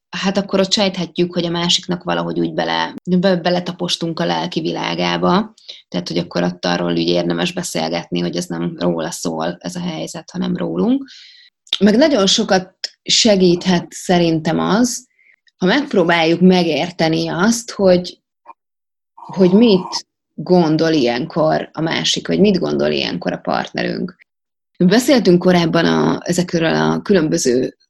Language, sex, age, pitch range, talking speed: Hungarian, female, 20-39, 160-195 Hz, 125 wpm